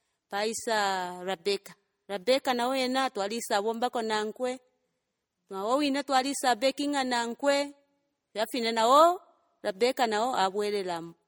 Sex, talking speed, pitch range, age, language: female, 95 wpm, 205-270 Hz, 40-59, English